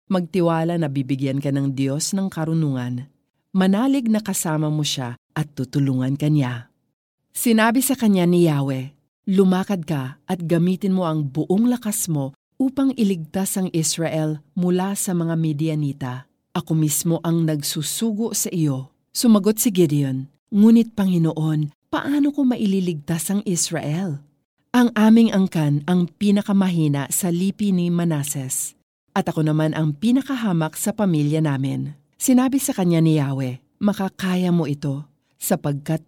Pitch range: 145-195 Hz